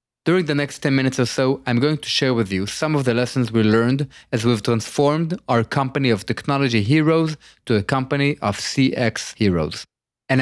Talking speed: 195 wpm